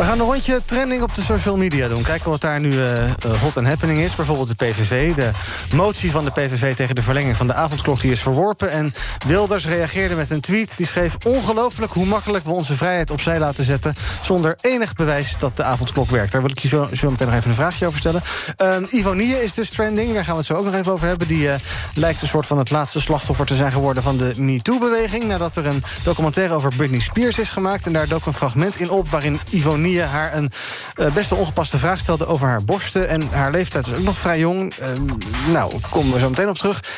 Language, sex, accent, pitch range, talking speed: Dutch, male, Dutch, 135-180 Hz, 240 wpm